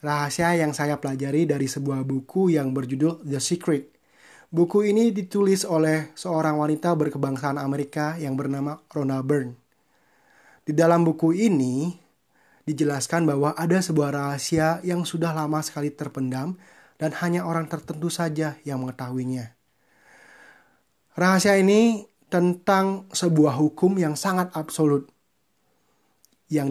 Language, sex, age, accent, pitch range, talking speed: Indonesian, male, 20-39, native, 145-175 Hz, 120 wpm